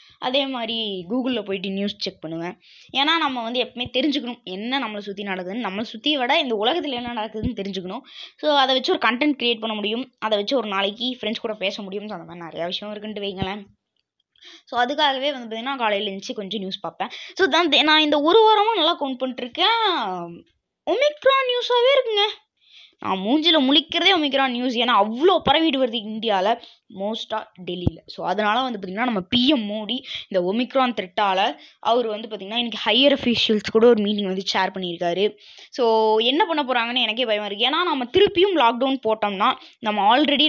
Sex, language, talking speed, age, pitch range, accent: female, Tamil, 170 wpm, 20-39, 205-280 Hz, native